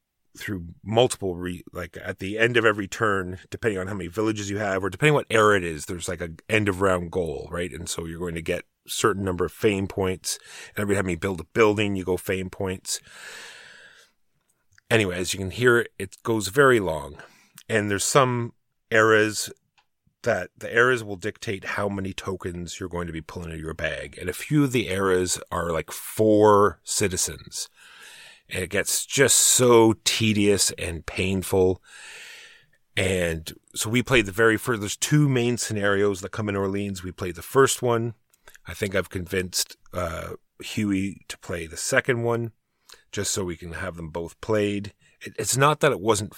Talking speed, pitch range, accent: 190 wpm, 90-110 Hz, American